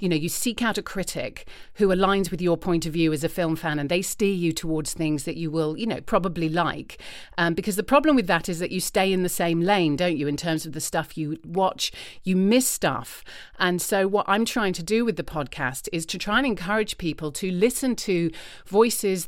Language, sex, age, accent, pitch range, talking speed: English, female, 40-59, British, 165-205 Hz, 240 wpm